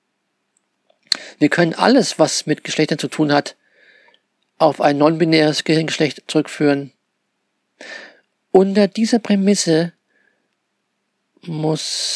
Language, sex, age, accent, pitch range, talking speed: German, male, 50-69, German, 150-200 Hz, 95 wpm